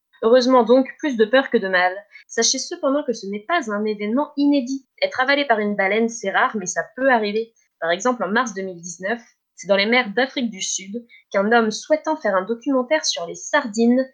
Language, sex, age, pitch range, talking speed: French, female, 20-39, 195-255 Hz, 210 wpm